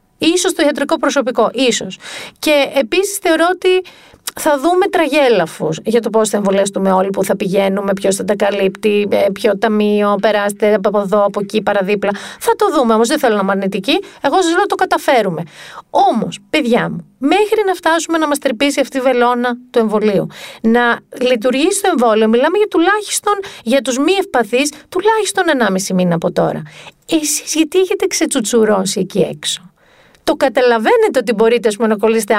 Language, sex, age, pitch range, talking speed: Greek, female, 40-59, 210-320 Hz, 170 wpm